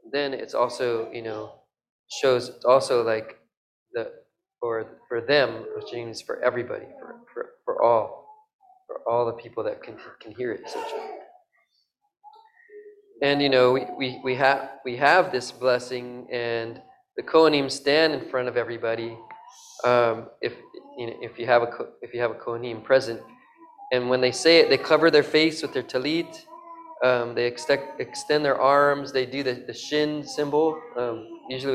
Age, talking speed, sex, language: 20-39, 170 wpm, male, English